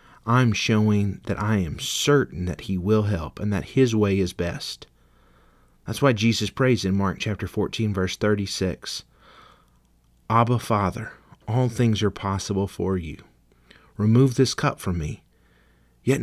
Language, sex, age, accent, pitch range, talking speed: English, male, 30-49, American, 85-120 Hz, 150 wpm